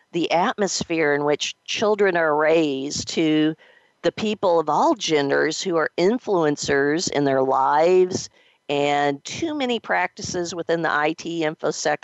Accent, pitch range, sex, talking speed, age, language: American, 150-185 Hz, female, 135 wpm, 50-69, English